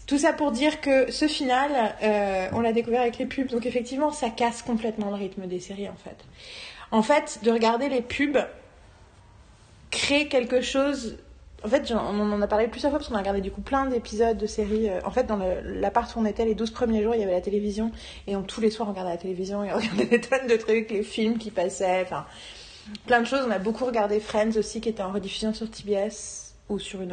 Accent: French